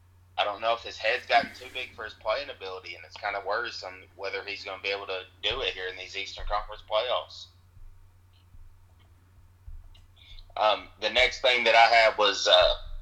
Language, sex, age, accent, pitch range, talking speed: English, male, 30-49, American, 90-105 Hz, 190 wpm